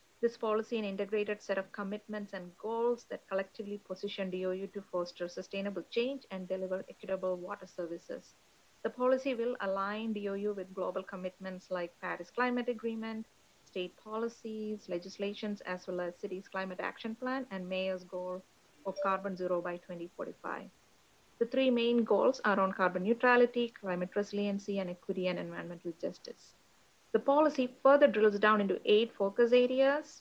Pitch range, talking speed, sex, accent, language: 185-230 Hz, 150 wpm, female, Indian, English